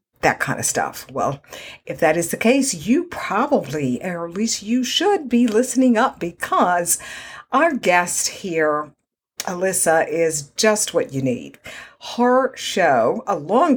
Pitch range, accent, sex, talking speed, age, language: 155-225 Hz, American, female, 145 wpm, 50-69, English